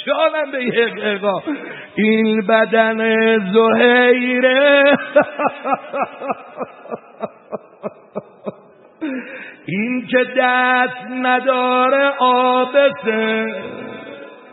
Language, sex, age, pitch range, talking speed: Persian, male, 60-79, 220-255 Hz, 40 wpm